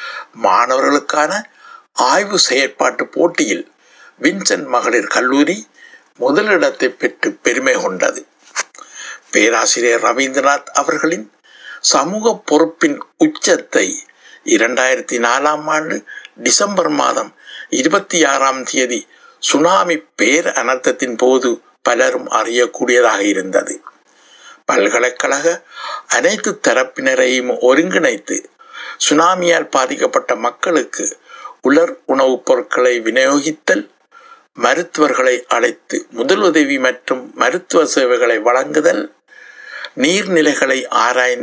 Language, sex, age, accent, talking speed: Tamil, male, 60-79, native, 40 wpm